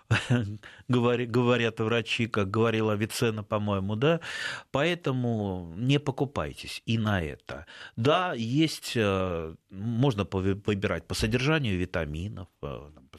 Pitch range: 90-120 Hz